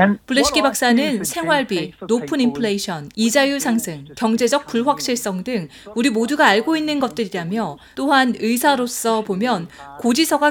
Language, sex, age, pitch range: Korean, female, 30-49, 200-275 Hz